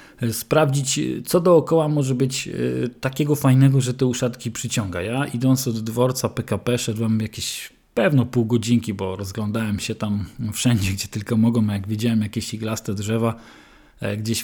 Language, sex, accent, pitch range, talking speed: Polish, male, native, 115-130 Hz, 145 wpm